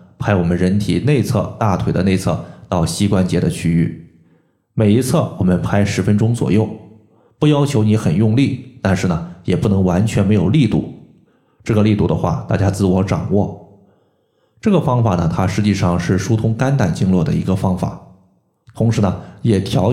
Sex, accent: male, native